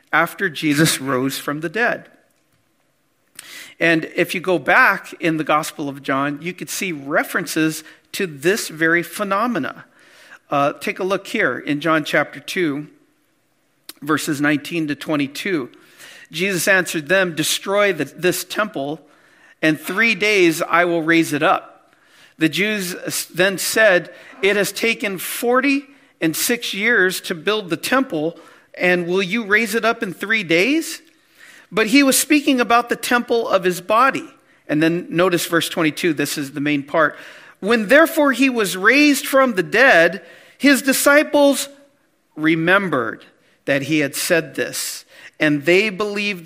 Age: 50-69